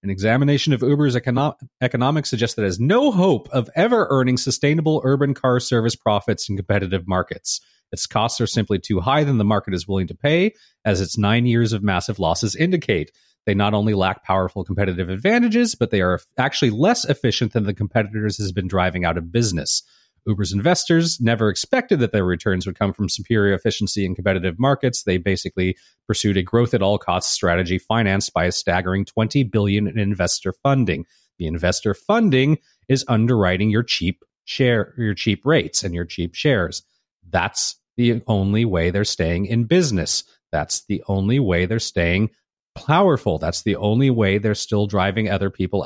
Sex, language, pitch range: male, English, 95-130 Hz